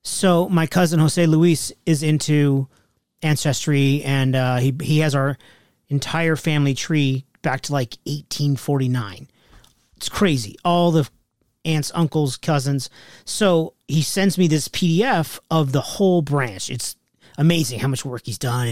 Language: English